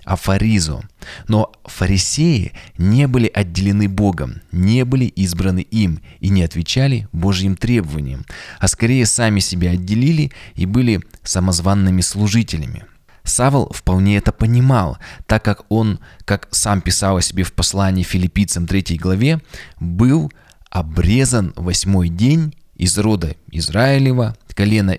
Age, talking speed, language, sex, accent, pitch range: 20-39, 120 wpm, Russian, male, native, 90-115 Hz